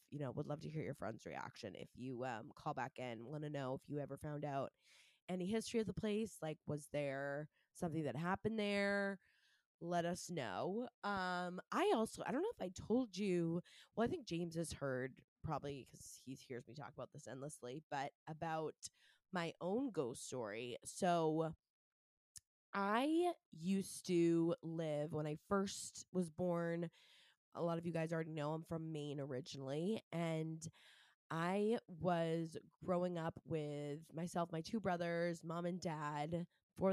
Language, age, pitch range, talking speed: English, 20-39, 150-180 Hz, 170 wpm